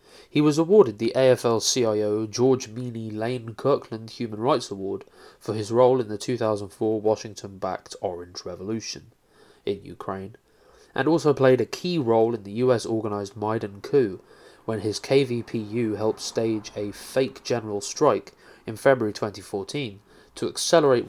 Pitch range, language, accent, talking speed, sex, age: 105-125 Hz, English, British, 135 wpm, male, 20-39